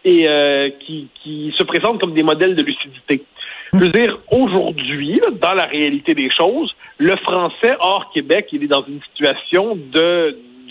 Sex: male